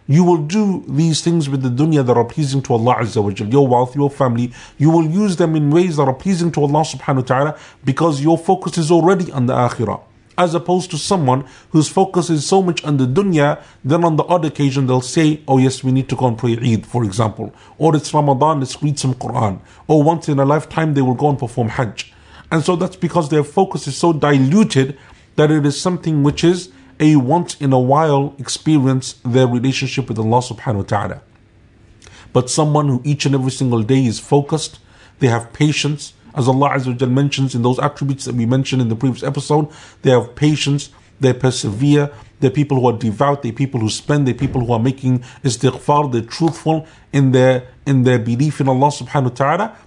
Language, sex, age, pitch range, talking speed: English, male, 50-69, 125-155 Hz, 210 wpm